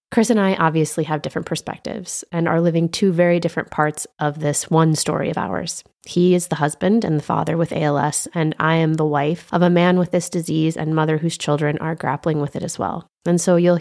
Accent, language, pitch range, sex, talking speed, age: American, English, 155-180 Hz, female, 230 wpm, 20-39